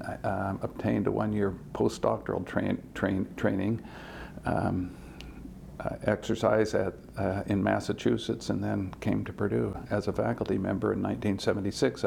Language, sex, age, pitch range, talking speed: English, male, 60-79, 95-110 Hz, 125 wpm